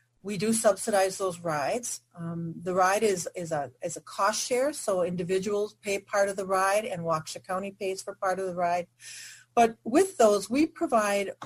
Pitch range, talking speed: 180-225 Hz, 190 wpm